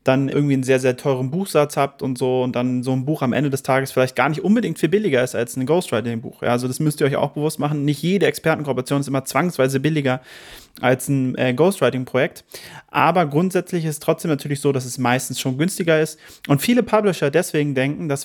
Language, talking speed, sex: German, 215 wpm, male